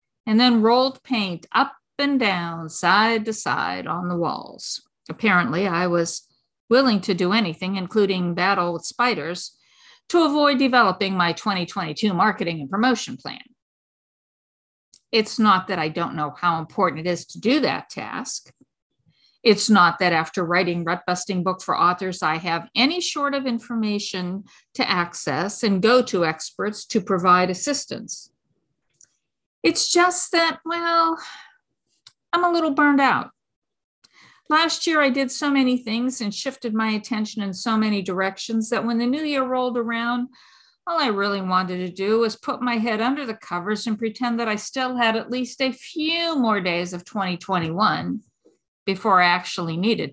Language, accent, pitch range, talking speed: English, American, 185-255 Hz, 160 wpm